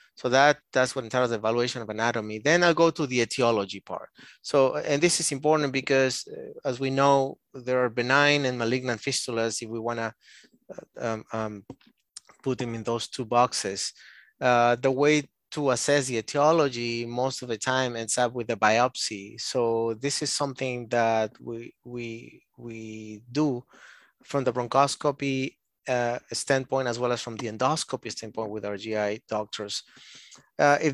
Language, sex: English, male